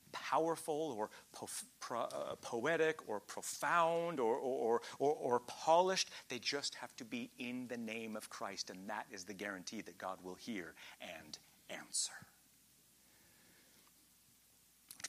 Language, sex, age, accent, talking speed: English, male, 40-59, American, 145 wpm